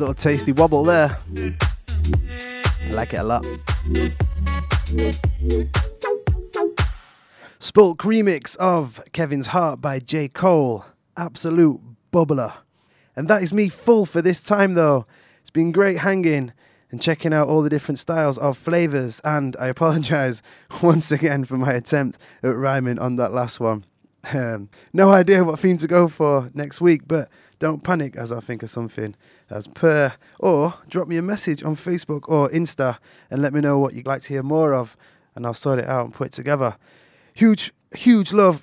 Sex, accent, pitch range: male, British, 120-165 Hz